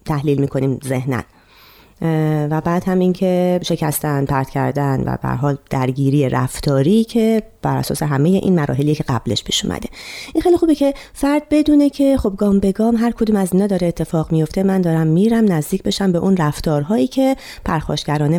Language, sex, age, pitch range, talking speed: Persian, female, 30-49, 150-215 Hz, 170 wpm